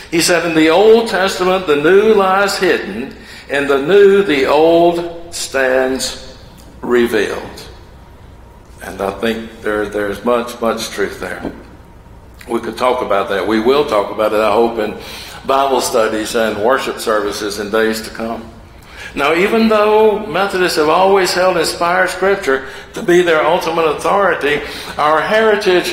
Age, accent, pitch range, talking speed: 60-79, American, 120-195 Hz, 145 wpm